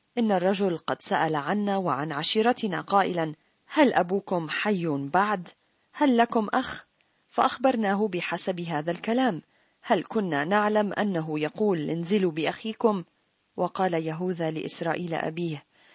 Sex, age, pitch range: female, 40-59, 170-225 Hz